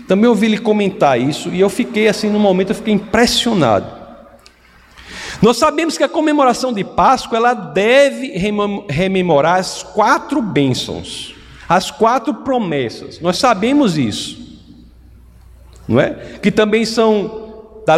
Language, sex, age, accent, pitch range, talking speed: Portuguese, male, 50-69, Brazilian, 165-245 Hz, 130 wpm